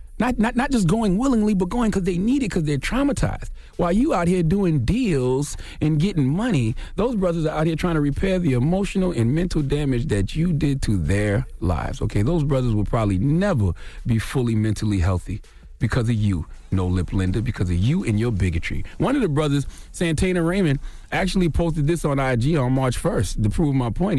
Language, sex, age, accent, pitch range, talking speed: English, male, 30-49, American, 105-155 Hz, 205 wpm